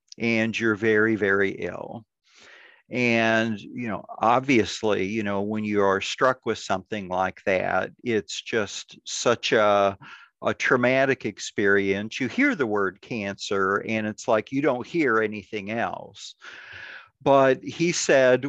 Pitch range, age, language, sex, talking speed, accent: 105-125 Hz, 50-69, English, male, 135 wpm, American